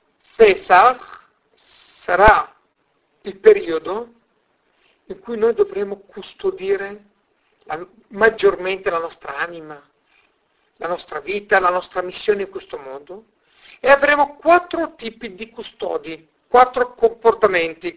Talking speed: 105 wpm